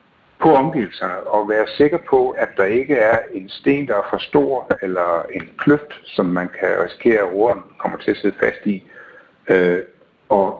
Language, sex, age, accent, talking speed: Danish, male, 60-79, native, 185 wpm